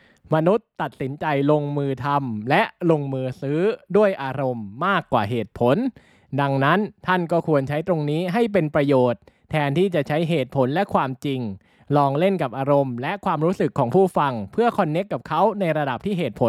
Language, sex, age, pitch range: Thai, male, 20-39, 135-185 Hz